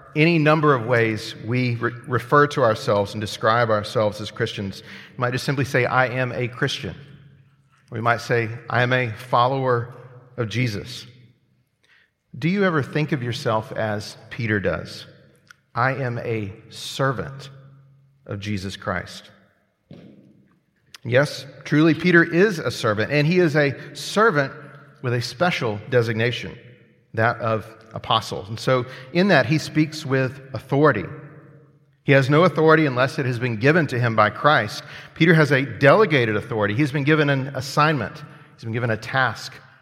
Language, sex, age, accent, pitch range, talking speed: English, male, 40-59, American, 120-150 Hz, 155 wpm